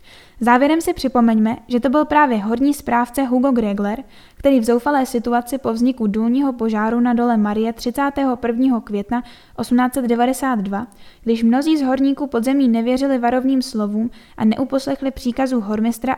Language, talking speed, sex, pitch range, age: Czech, 135 wpm, female, 225-260 Hz, 10-29